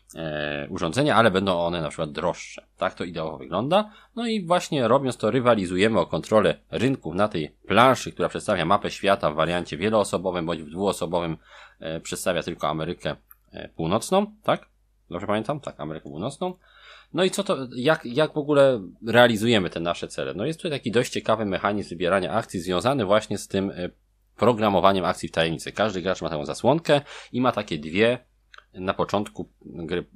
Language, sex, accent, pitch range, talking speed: Polish, male, native, 90-130 Hz, 170 wpm